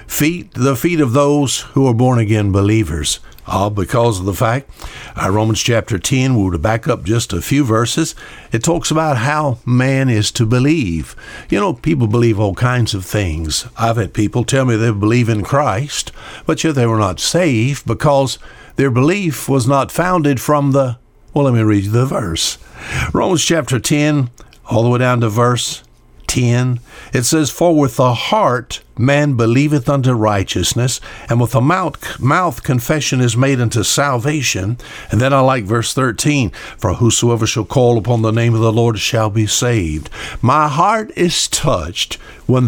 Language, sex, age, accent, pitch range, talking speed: English, male, 60-79, American, 110-140 Hz, 175 wpm